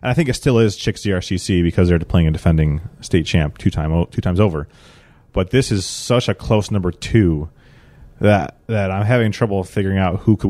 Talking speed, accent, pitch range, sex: 210 wpm, American, 85-110 Hz, male